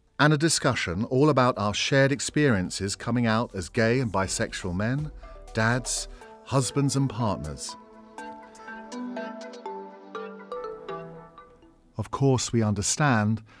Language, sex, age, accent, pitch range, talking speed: English, male, 50-69, British, 100-140 Hz, 100 wpm